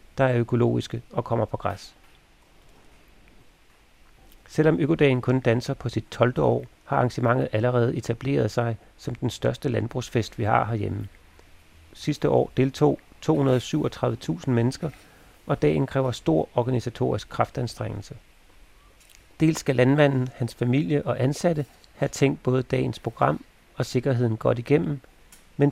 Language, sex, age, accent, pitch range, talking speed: Danish, male, 40-59, native, 115-140 Hz, 130 wpm